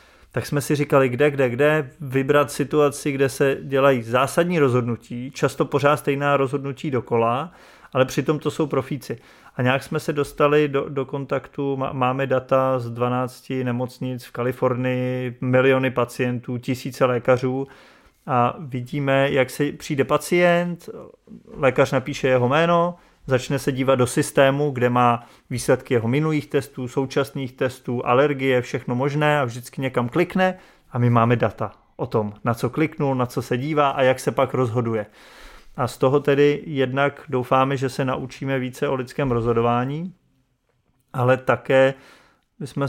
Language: Czech